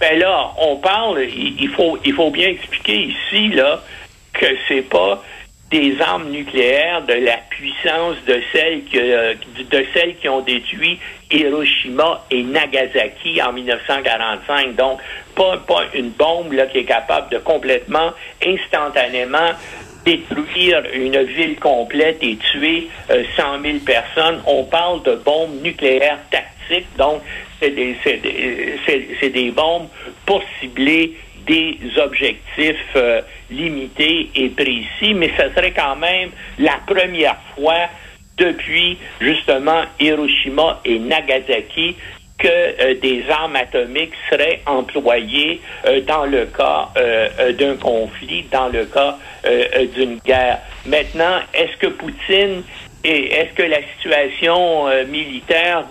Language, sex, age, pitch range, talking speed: French, male, 60-79, 130-185 Hz, 130 wpm